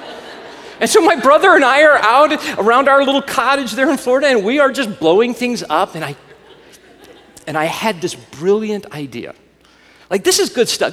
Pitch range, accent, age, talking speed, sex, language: 160-265 Hz, American, 40-59, 190 wpm, male, English